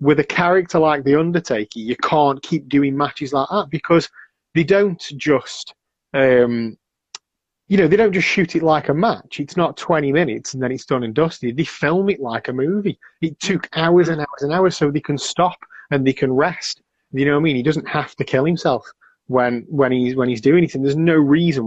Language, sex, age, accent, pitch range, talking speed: English, male, 30-49, British, 115-155 Hz, 220 wpm